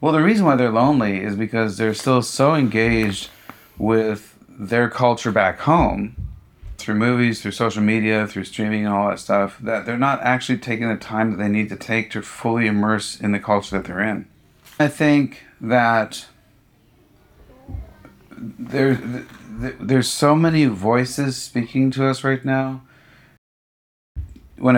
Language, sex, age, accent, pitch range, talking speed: English, male, 40-59, American, 105-130 Hz, 150 wpm